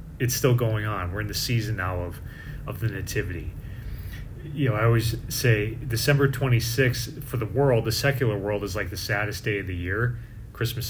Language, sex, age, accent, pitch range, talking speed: English, male, 30-49, American, 100-125 Hz, 195 wpm